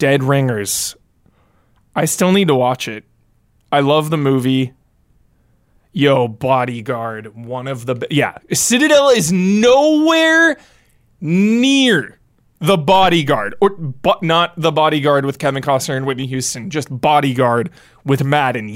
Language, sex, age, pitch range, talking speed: English, male, 20-39, 130-190 Hz, 130 wpm